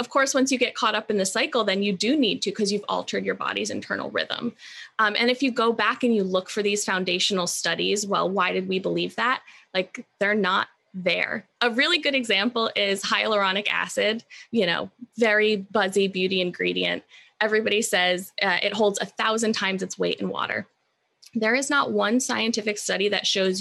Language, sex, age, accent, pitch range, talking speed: English, female, 20-39, American, 195-245 Hz, 200 wpm